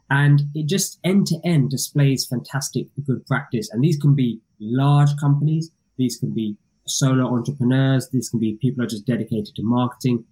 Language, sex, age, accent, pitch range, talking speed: English, male, 20-39, British, 115-140 Hz, 165 wpm